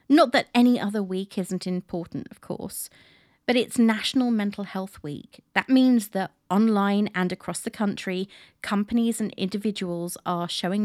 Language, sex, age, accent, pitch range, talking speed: English, female, 40-59, British, 175-215 Hz, 155 wpm